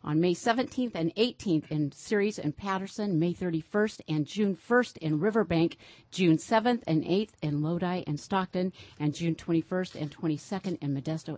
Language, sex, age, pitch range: English, female, 50-69, 150-190 Hz